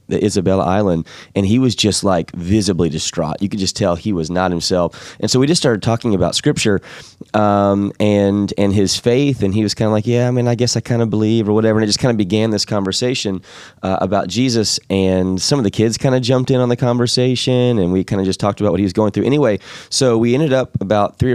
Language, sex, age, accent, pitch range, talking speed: English, male, 20-39, American, 100-120 Hz, 255 wpm